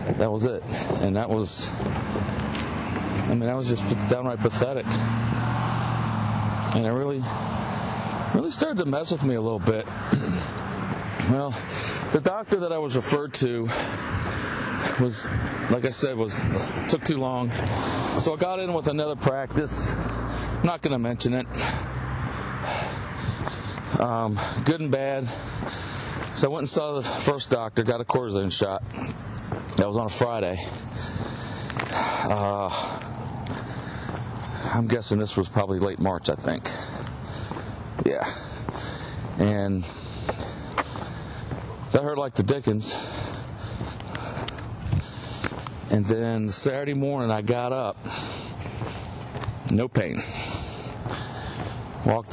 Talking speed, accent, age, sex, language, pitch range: 115 wpm, American, 40-59, male, English, 110-130 Hz